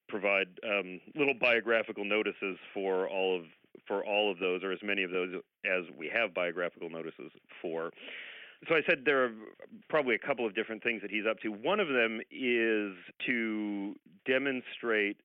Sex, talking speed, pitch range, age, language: male, 175 wpm, 95-115 Hz, 40-59, English